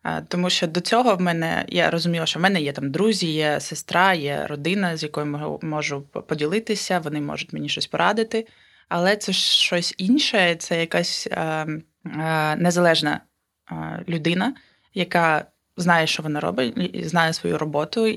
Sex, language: female, Ukrainian